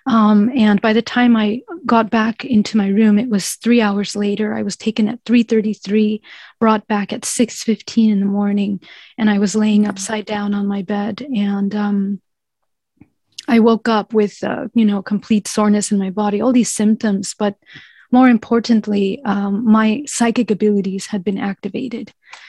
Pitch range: 200-220 Hz